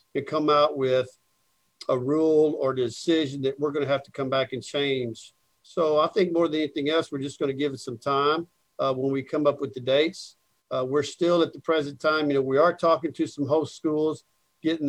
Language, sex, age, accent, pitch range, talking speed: English, male, 50-69, American, 135-160 Hz, 235 wpm